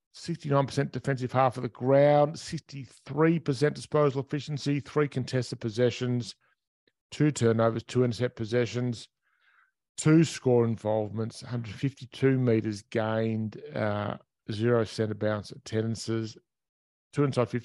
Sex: male